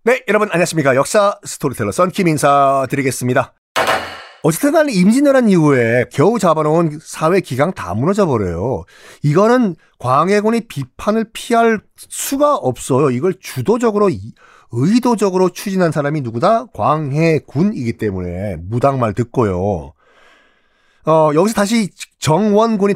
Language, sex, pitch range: Korean, male, 130-200 Hz